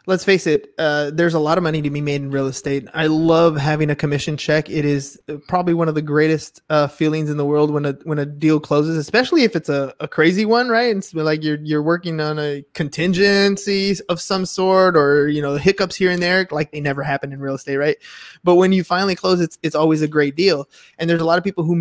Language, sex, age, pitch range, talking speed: English, male, 20-39, 155-190 Hz, 255 wpm